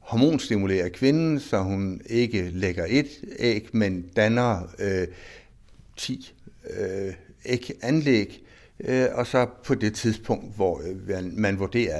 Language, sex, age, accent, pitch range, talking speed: Danish, male, 60-79, native, 95-120 Hz, 120 wpm